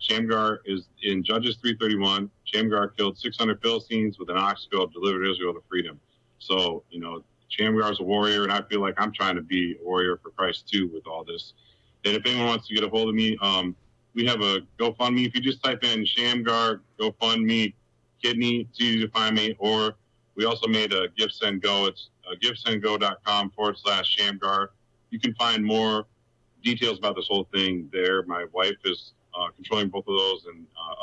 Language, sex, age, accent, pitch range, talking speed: English, male, 30-49, American, 95-115 Hz, 185 wpm